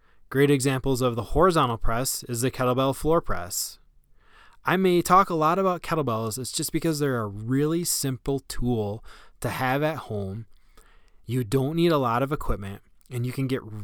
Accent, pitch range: American, 115-140 Hz